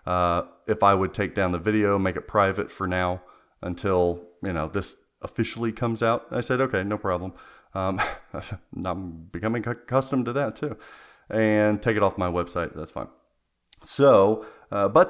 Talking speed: 170 wpm